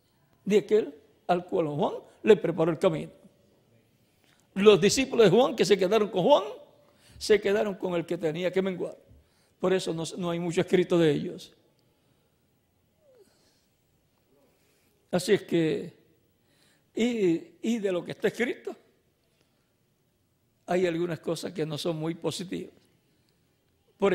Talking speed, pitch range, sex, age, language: 135 wpm, 165-205 Hz, male, 60-79, Spanish